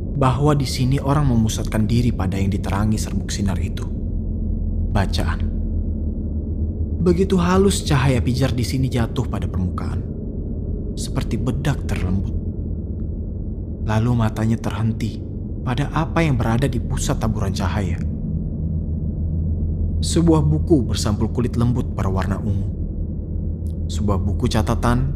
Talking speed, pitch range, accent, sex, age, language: 110 wpm, 80-110 Hz, native, male, 30-49, Indonesian